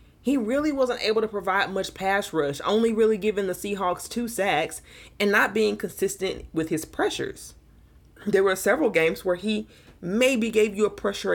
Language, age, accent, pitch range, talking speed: English, 30-49, American, 170-235 Hz, 180 wpm